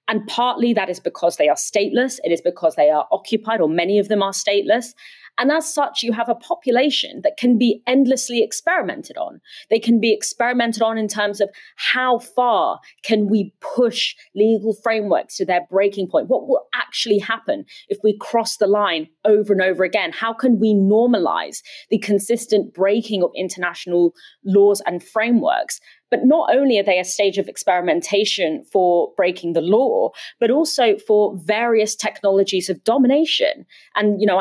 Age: 30-49